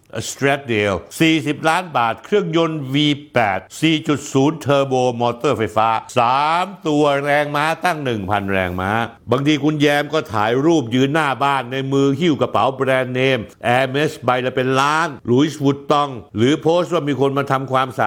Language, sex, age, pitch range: Thai, male, 60-79, 110-140 Hz